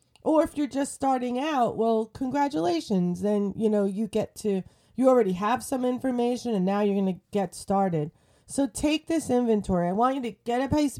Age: 30-49